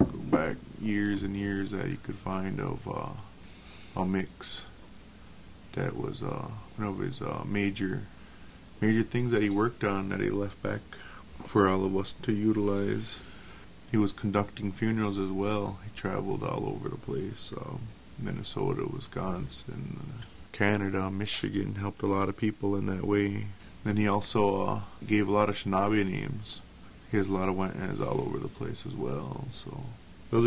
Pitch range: 95-110 Hz